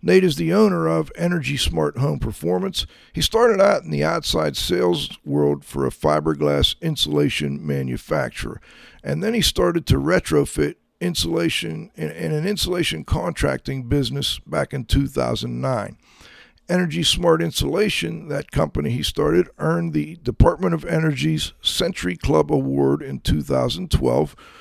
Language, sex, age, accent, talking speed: English, male, 50-69, American, 135 wpm